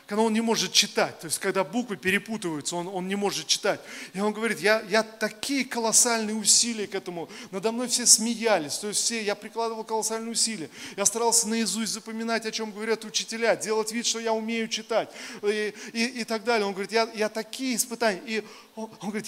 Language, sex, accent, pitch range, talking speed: Russian, male, native, 195-230 Hz, 200 wpm